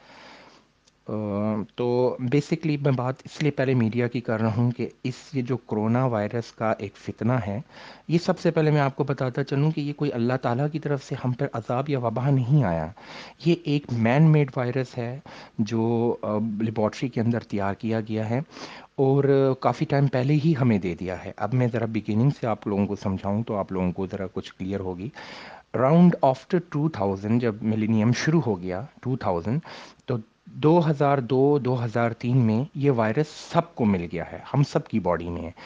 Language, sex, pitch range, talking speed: Urdu, male, 110-140 Hz, 185 wpm